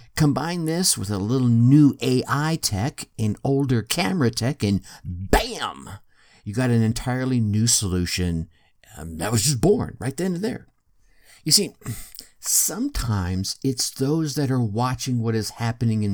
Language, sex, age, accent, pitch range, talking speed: English, male, 50-69, American, 105-140 Hz, 150 wpm